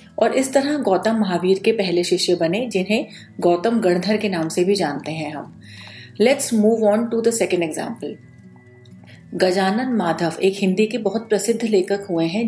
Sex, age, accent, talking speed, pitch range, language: female, 40-59, native, 175 wpm, 180-215 Hz, Hindi